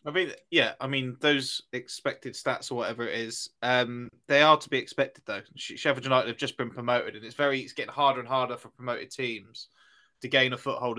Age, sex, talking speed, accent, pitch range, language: 20-39, male, 220 wpm, British, 120-135 Hz, English